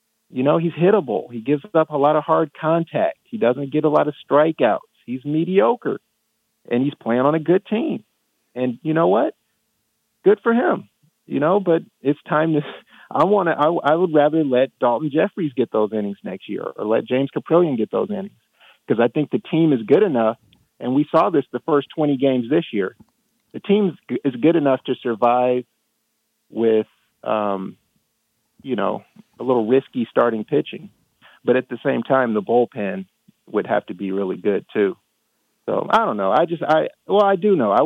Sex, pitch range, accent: male, 120-165 Hz, American